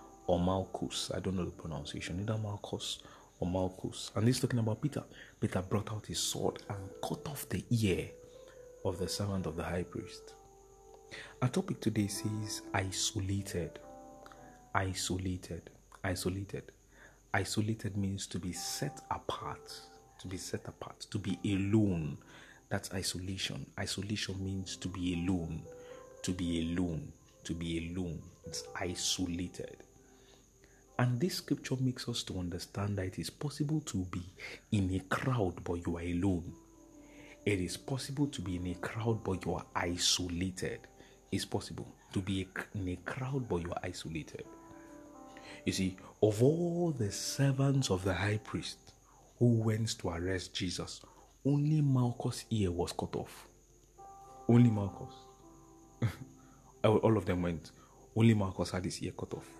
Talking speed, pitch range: 145 wpm, 90-120 Hz